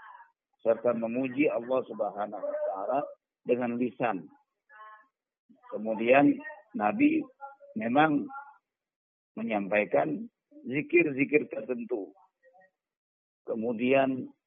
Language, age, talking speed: Indonesian, 50-69, 60 wpm